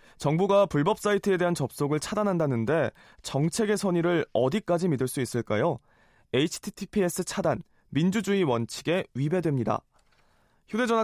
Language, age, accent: Korean, 20-39, native